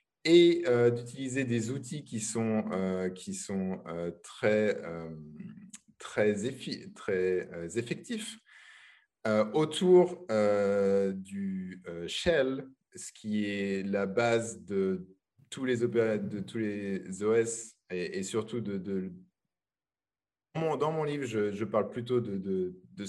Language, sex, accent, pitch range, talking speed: French, male, French, 100-145 Hz, 125 wpm